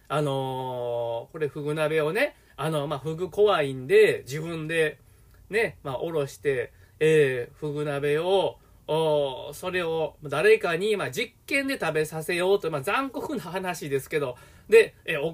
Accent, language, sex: native, Japanese, male